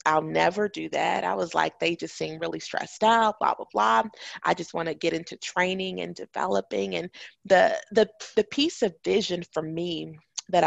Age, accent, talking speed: 30-49, American, 195 wpm